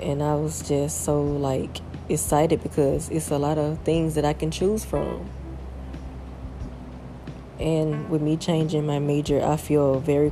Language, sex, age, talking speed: English, female, 20-39, 155 wpm